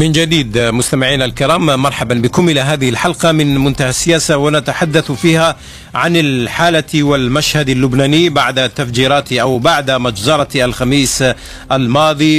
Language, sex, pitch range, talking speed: Arabic, male, 120-145 Hz, 120 wpm